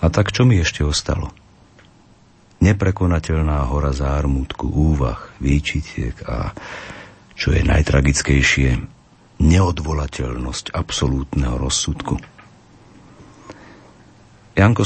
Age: 50-69